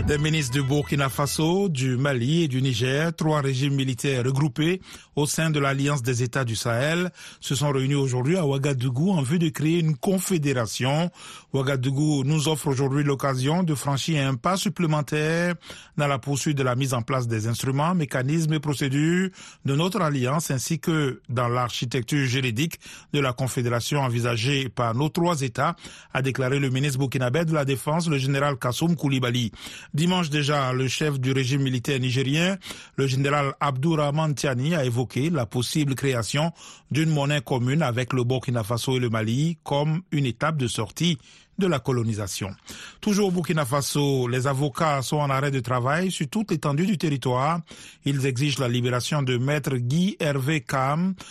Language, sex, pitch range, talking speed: French, male, 130-155 Hz, 170 wpm